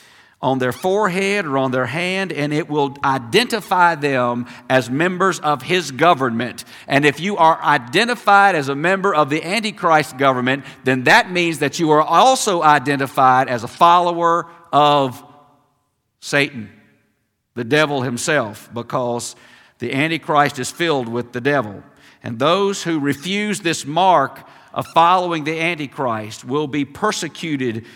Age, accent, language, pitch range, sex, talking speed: 50-69, American, English, 130-170 Hz, male, 140 wpm